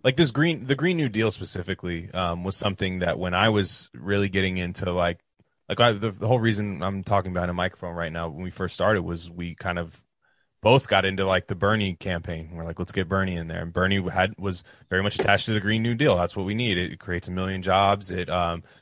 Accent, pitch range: American, 90-105 Hz